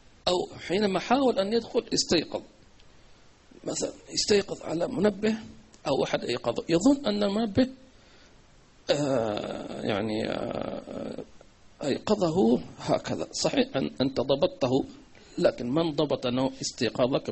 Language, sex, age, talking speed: English, male, 50-69, 90 wpm